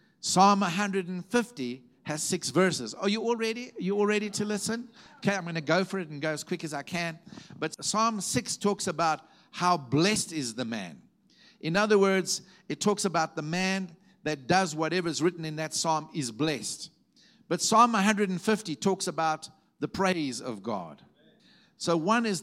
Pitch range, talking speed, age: 150-195 Hz, 185 wpm, 50-69